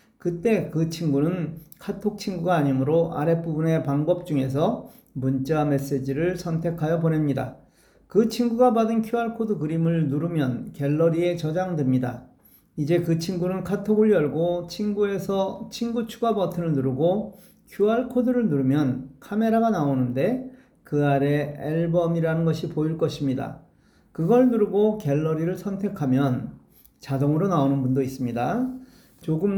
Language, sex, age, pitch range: Korean, male, 40-59, 145-200 Hz